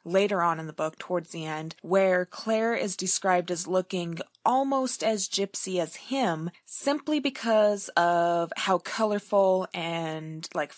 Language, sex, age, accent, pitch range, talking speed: English, female, 20-39, American, 170-210 Hz, 145 wpm